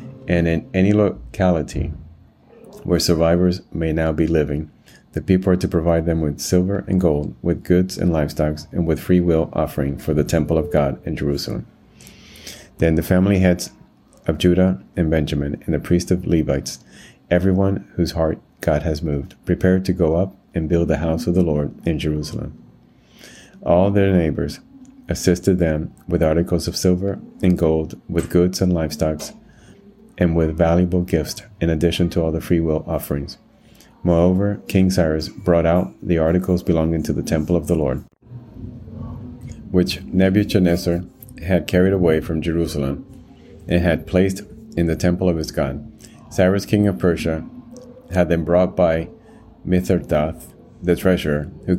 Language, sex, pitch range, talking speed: English, male, 80-95 Hz, 160 wpm